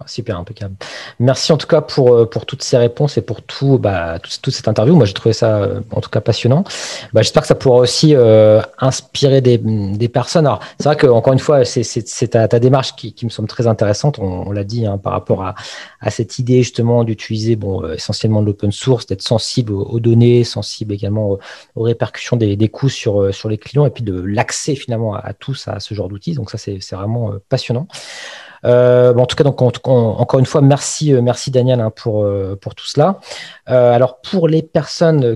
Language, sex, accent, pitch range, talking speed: French, male, French, 110-140 Hz, 230 wpm